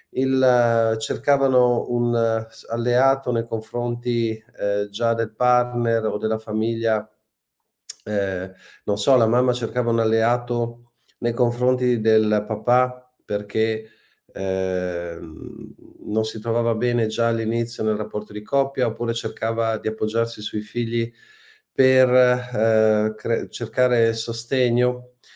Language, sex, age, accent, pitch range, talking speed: Italian, male, 40-59, native, 110-125 Hz, 110 wpm